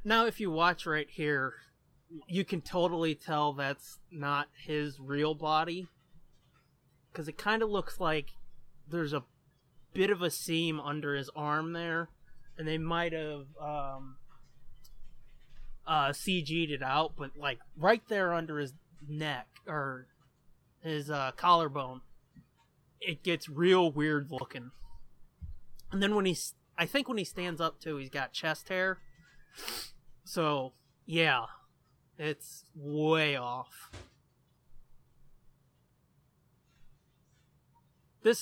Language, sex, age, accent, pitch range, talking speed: English, male, 20-39, American, 140-165 Hz, 115 wpm